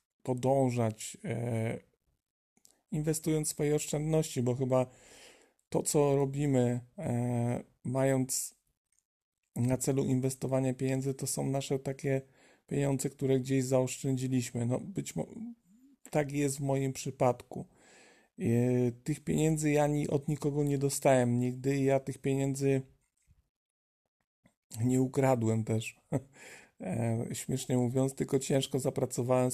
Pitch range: 125-140 Hz